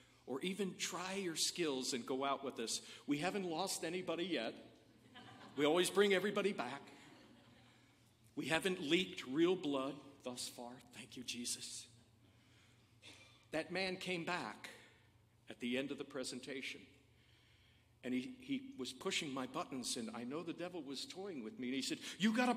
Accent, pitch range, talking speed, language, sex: American, 120-180 Hz, 165 wpm, English, male